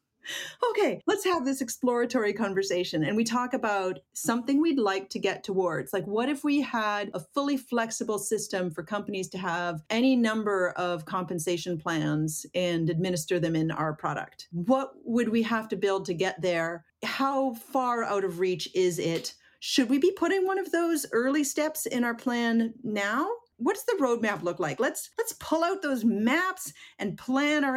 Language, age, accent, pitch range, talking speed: English, 40-59, American, 185-265 Hz, 180 wpm